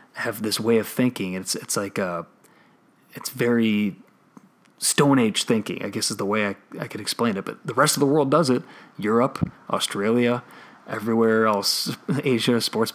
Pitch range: 100-125 Hz